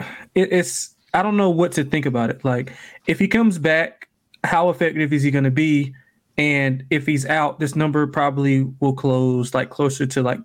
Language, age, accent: English, 20-39, American